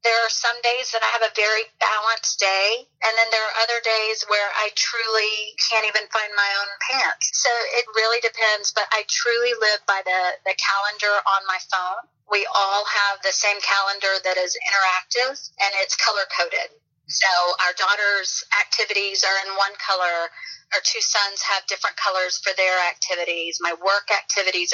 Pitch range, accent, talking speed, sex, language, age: 180-220 Hz, American, 175 wpm, female, English, 30-49